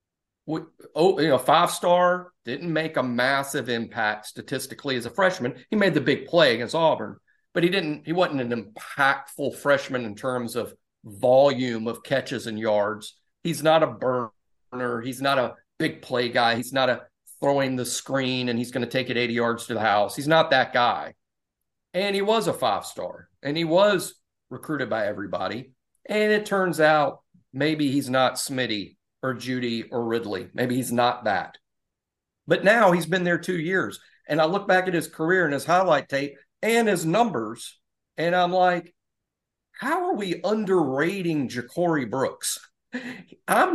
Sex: male